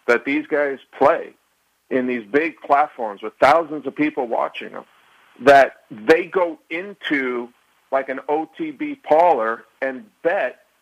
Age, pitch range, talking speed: 50-69, 115-160 Hz, 135 wpm